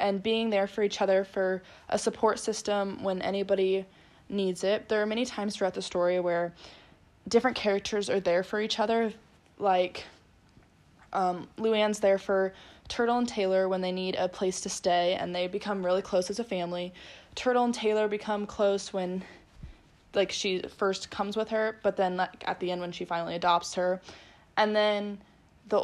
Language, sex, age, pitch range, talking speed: English, female, 10-29, 180-210 Hz, 180 wpm